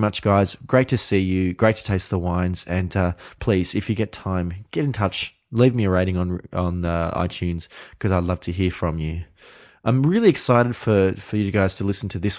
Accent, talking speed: Australian, 230 wpm